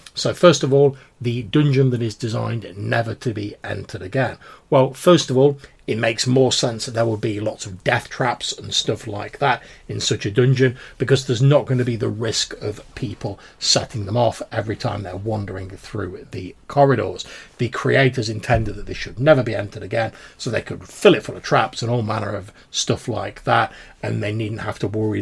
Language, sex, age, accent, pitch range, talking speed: English, male, 40-59, British, 105-130 Hz, 210 wpm